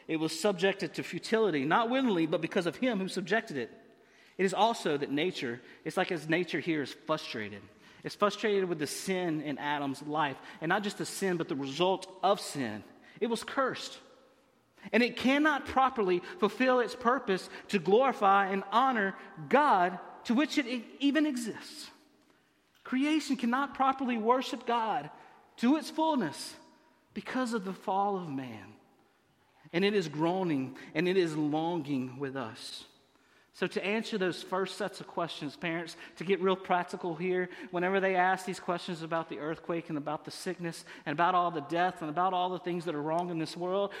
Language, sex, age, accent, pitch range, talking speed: English, male, 30-49, American, 170-235 Hz, 175 wpm